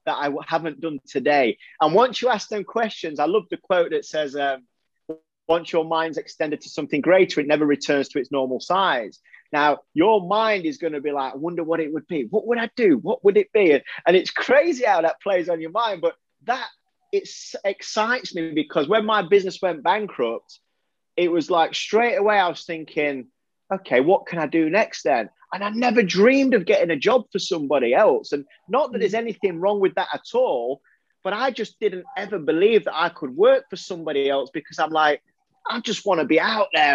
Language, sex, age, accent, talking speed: English, male, 30-49, British, 215 wpm